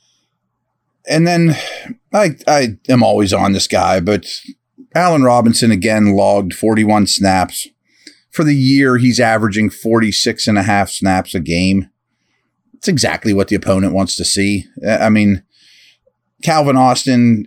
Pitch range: 95-120 Hz